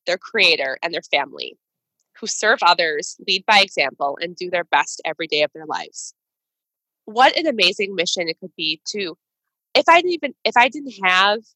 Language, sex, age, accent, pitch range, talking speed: English, female, 20-39, American, 190-295 Hz, 185 wpm